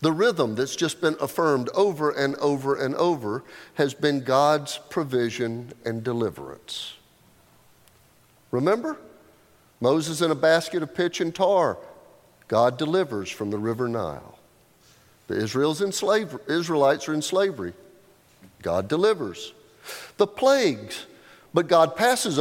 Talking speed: 125 wpm